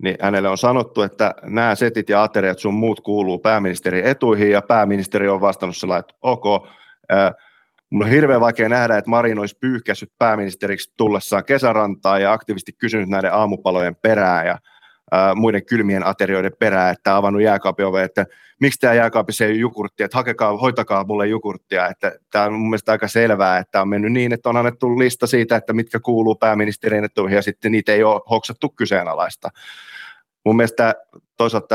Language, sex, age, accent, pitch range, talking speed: Finnish, male, 30-49, native, 95-110 Hz, 170 wpm